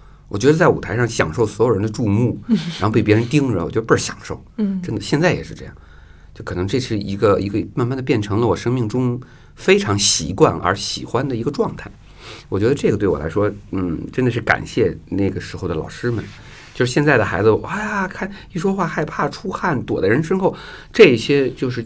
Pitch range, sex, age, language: 95-140 Hz, male, 50-69, Chinese